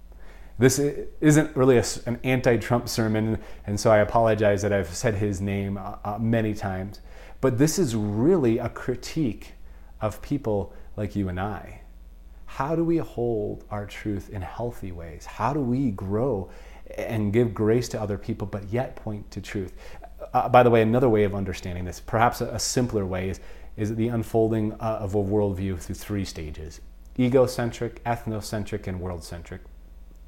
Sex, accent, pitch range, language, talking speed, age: male, American, 95-120 Hz, English, 160 wpm, 30-49